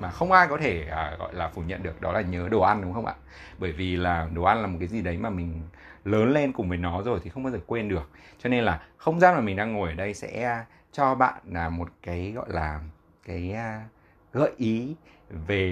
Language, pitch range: Vietnamese, 90-120 Hz